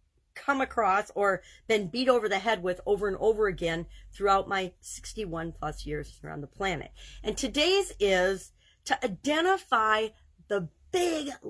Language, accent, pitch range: English, American, 175-245 Hz